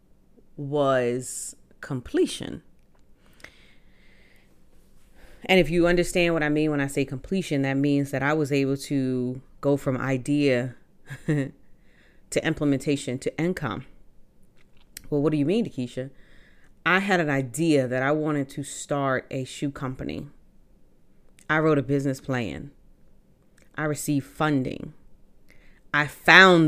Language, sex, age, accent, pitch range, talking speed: English, female, 30-49, American, 130-150 Hz, 125 wpm